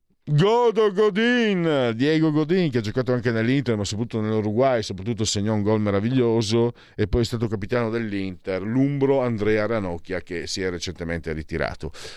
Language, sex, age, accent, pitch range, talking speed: Italian, male, 50-69, native, 105-145 Hz, 155 wpm